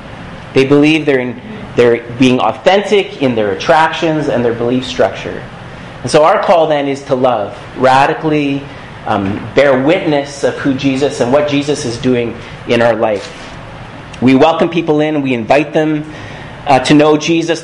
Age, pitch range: 30-49, 130-160 Hz